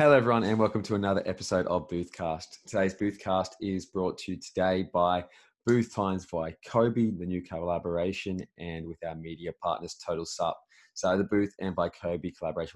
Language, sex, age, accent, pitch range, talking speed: English, male, 20-39, Australian, 85-120 Hz, 180 wpm